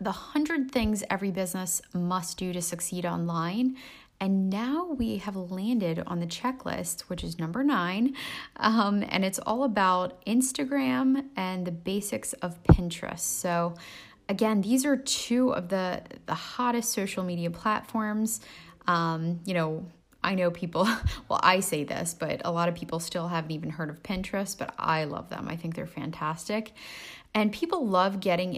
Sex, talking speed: female, 165 wpm